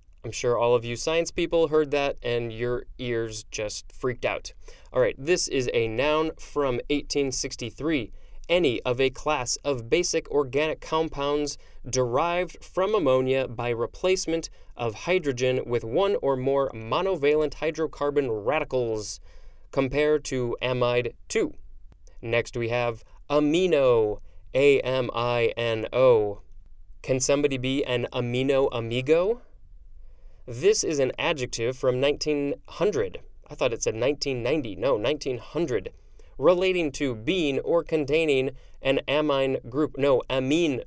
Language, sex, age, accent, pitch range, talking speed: English, male, 20-39, American, 120-160 Hz, 120 wpm